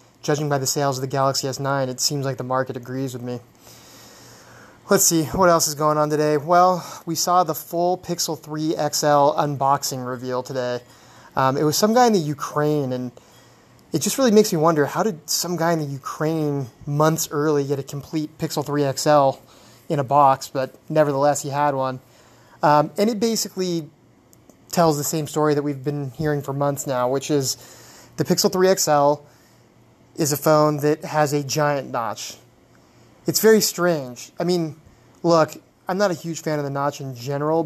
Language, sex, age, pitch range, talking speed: English, male, 20-39, 140-165 Hz, 190 wpm